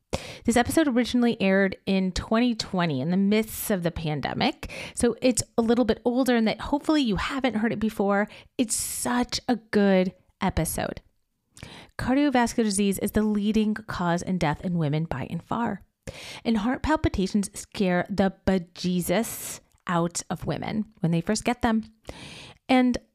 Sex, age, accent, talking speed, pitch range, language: female, 30-49, American, 155 wpm, 185-240 Hz, English